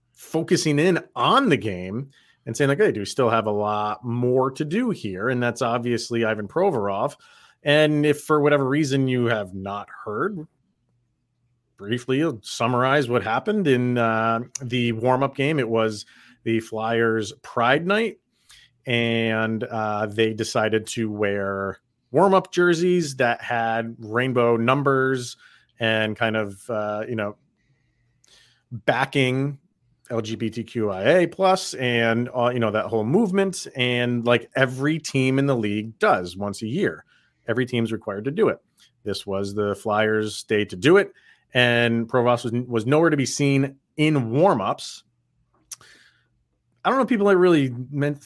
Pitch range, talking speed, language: 110-135 Hz, 150 wpm, English